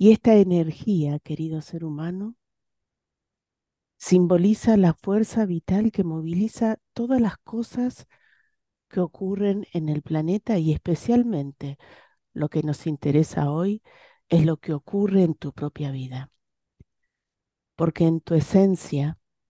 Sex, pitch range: female, 155-215 Hz